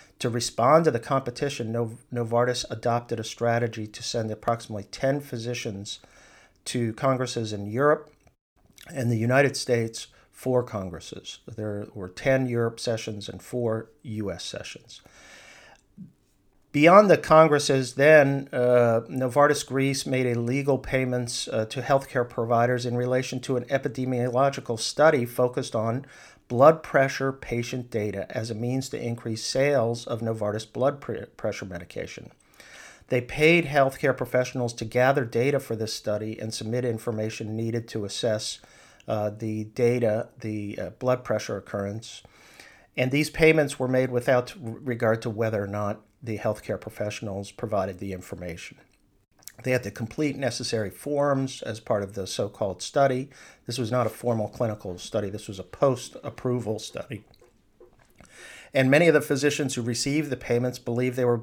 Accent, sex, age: American, male, 50-69